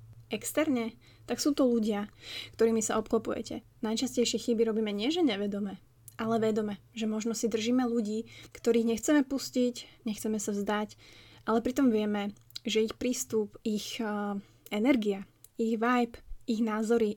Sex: female